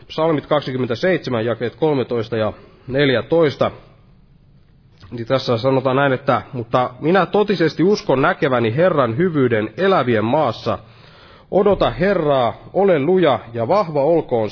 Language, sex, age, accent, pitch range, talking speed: Finnish, male, 30-49, native, 125-175 Hz, 110 wpm